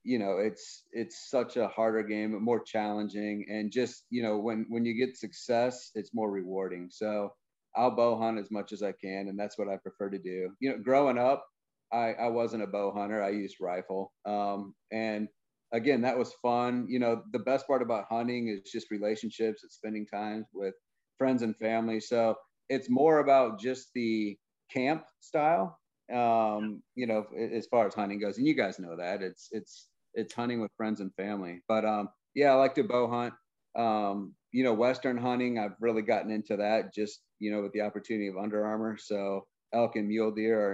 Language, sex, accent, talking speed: English, male, American, 200 wpm